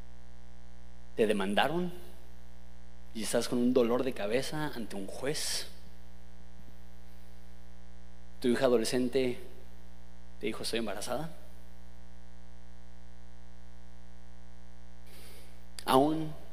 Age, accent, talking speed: 30-49, Mexican, 75 wpm